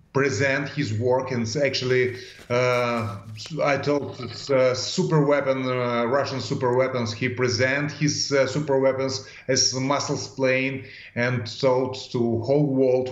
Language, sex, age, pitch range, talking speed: English, male, 30-49, 120-135 Hz, 135 wpm